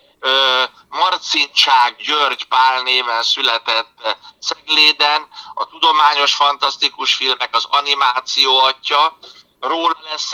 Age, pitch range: 60-79, 130-150 Hz